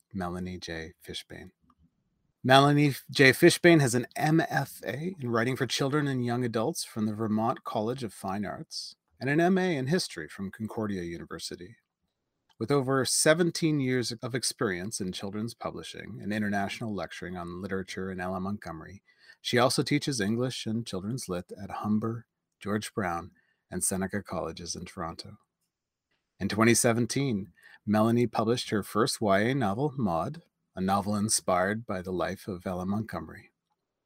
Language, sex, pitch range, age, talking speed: English, male, 100-135 Hz, 30-49, 145 wpm